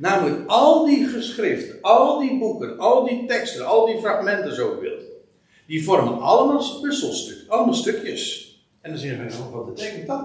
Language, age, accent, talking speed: Dutch, 60-79, Dutch, 175 wpm